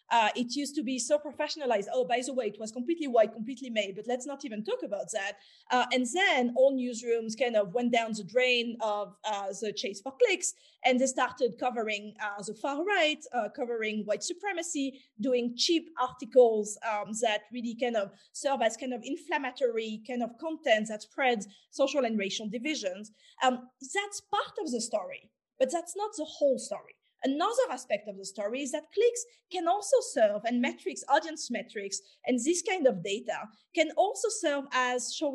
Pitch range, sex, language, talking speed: 225-305 Hz, female, English, 190 wpm